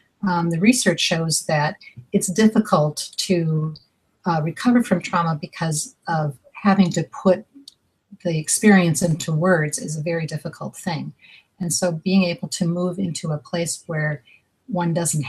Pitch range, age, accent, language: 155-190 Hz, 50-69, American, English